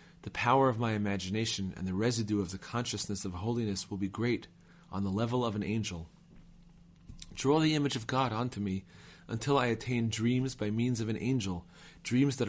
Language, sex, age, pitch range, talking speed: English, male, 30-49, 100-120 Hz, 190 wpm